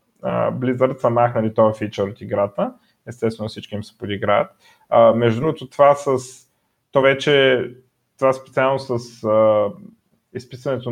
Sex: male